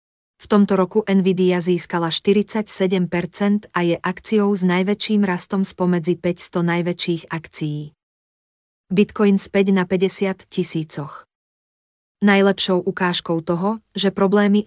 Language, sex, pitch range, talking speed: Slovak, female, 170-195 Hz, 105 wpm